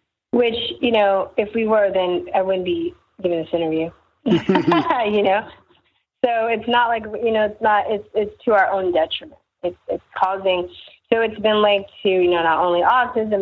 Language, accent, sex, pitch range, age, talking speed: English, American, female, 190-235 Hz, 30-49, 190 wpm